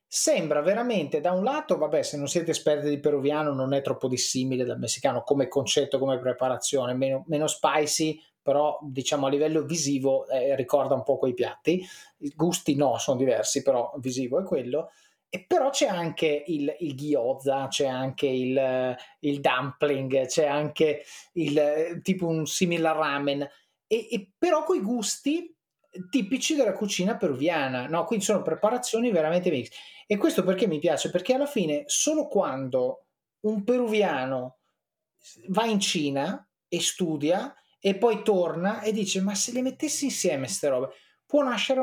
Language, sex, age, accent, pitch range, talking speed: Italian, male, 30-49, native, 140-210 Hz, 160 wpm